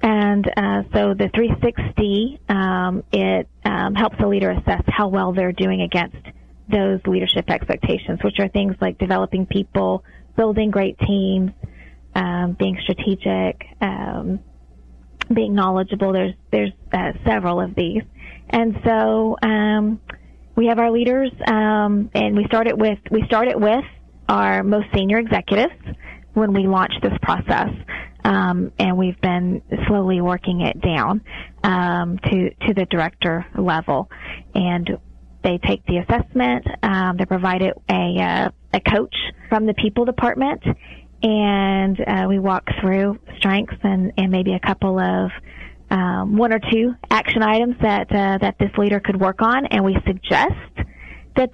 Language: English